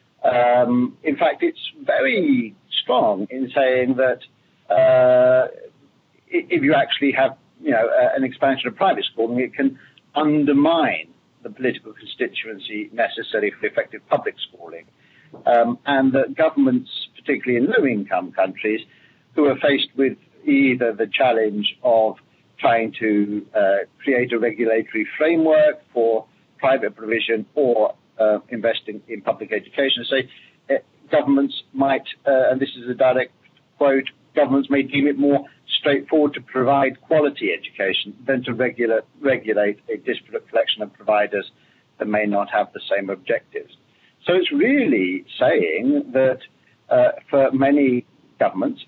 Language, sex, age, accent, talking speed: English, male, 50-69, British, 135 wpm